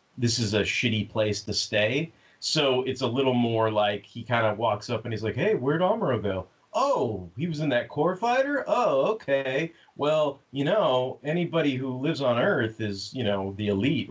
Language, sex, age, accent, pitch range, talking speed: English, male, 30-49, American, 100-130 Hz, 195 wpm